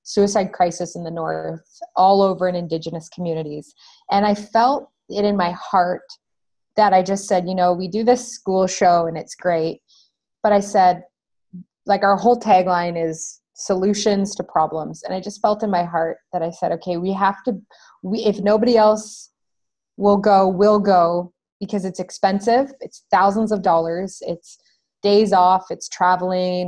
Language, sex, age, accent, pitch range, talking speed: English, female, 20-39, American, 180-205 Hz, 170 wpm